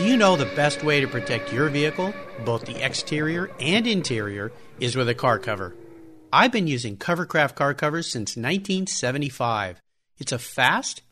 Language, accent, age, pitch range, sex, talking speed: English, American, 50-69, 125-175 Hz, male, 165 wpm